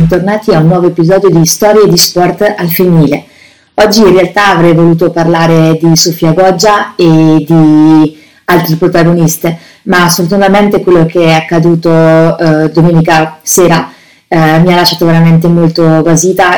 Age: 30-49